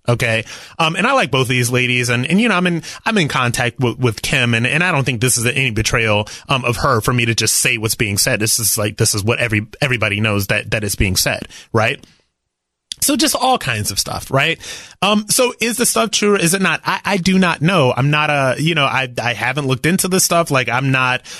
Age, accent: 30-49, American